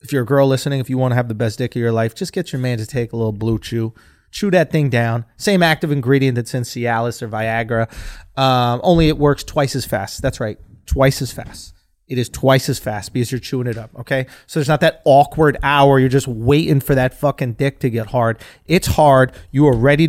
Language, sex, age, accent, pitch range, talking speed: English, male, 30-49, American, 120-165 Hz, 245 wpm